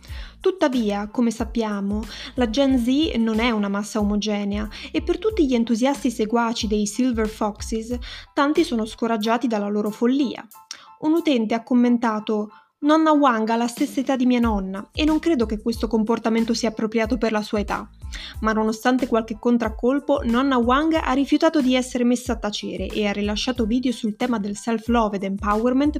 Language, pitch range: Italian, 215-260 Hz